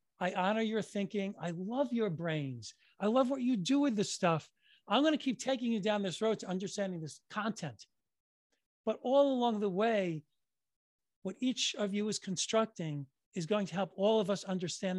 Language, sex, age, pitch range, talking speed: English, male, 40-59, 180-240 Hz, 190 wpm